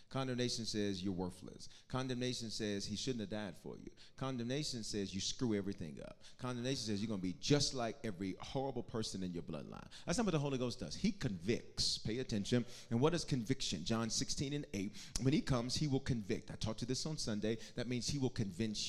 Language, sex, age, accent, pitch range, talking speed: English, male, 30-49, American, 110-155 Hz, 215 wpm